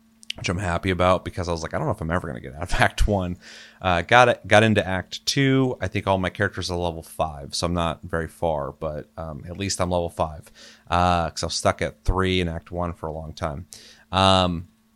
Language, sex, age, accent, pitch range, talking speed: English, male, 30-49, American, 85-95 Hz, 255 wpm